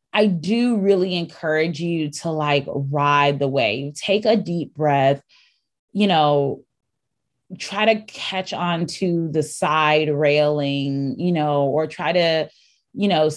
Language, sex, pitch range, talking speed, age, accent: English, female, 155-195 Hz, 140 wpm, 20-39, American